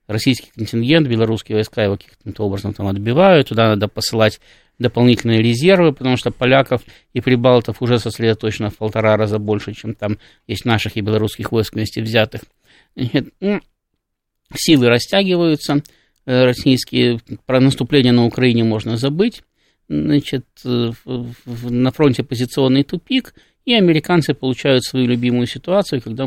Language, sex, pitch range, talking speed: Russian, male, 110-145 Hz, 125 wpm